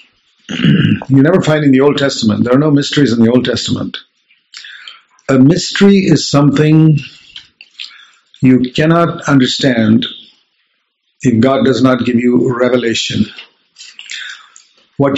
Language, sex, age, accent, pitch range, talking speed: English, male, 50-69, Indian, 130-155 Hz, 120 wpm